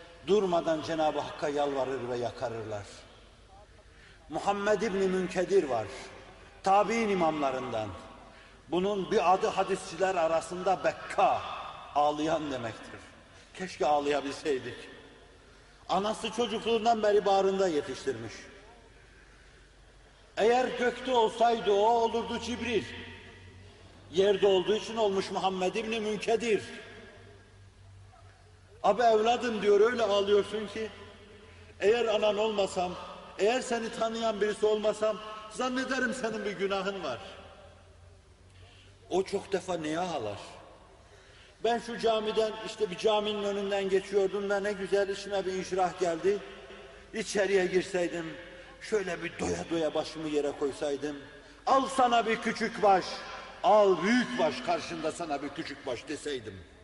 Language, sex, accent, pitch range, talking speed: Turkish, male, native, 145-215 Hz, 110 wpm